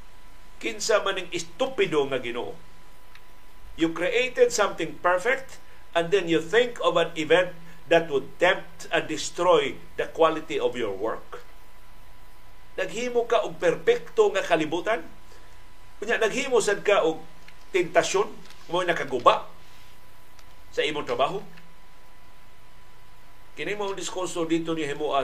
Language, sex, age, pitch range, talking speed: Filipino, male, 50-69, 160-230 Hz, 125 wpm